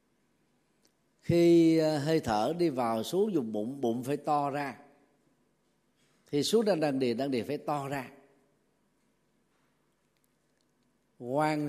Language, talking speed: Vietnamese, 115 wpm